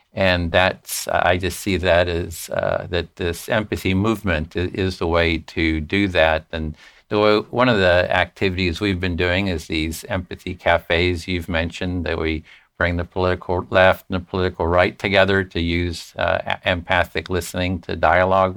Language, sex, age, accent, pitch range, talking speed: English, male, 60-79, American, 85-100 Hz, 170 wpm